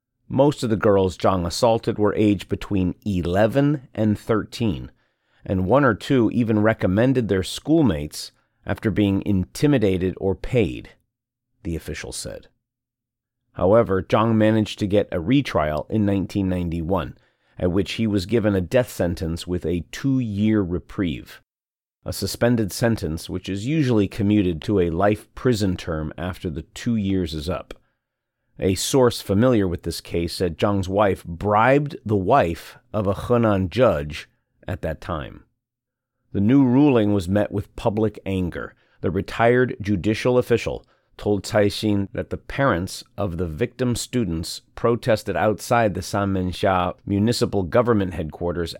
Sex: male